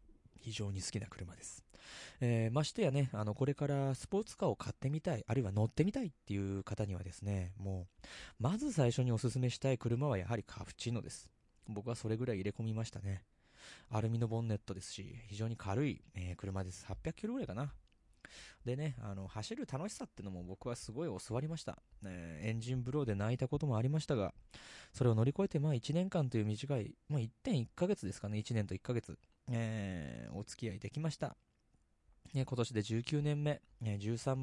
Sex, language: male, Japanese